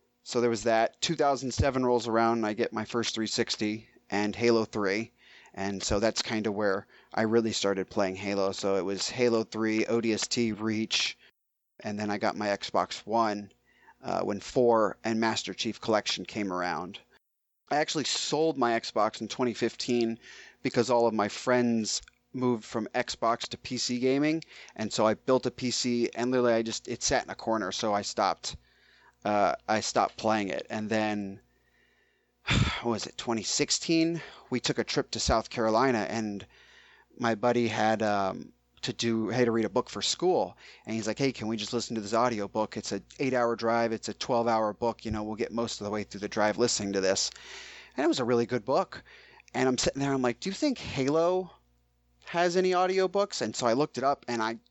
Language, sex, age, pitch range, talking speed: English, male, 30-49, 105-125 Hz, 200 wpm